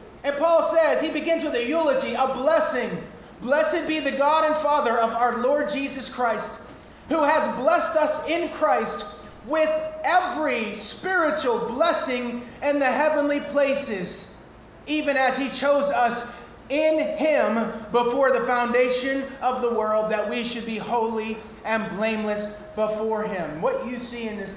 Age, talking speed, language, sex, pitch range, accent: 30-49, 150 wpm, English, male, 240-310 Hz, American